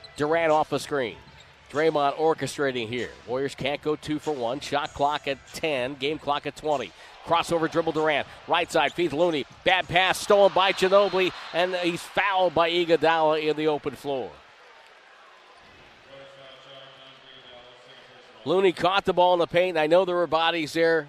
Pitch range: 135-170 Hz